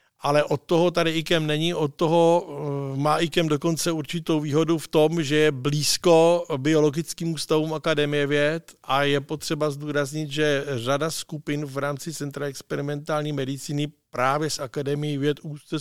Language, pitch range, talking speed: Czech, 145-170 Hz, 150 wpm